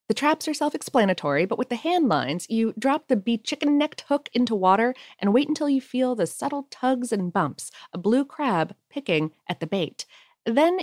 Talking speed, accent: 200 wpm, American